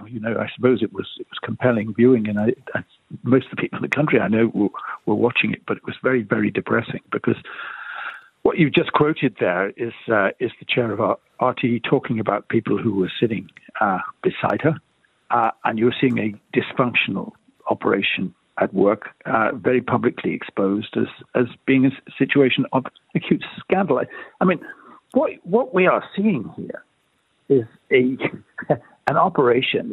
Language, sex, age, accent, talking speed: English, male, 60-79, British, 175 wpm